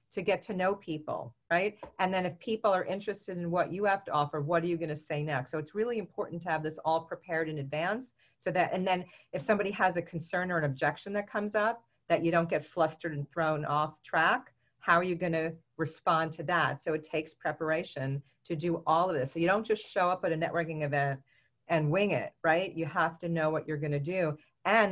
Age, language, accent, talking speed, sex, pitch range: 40-59, English, American, 240 wpm, female, 155-185 Hz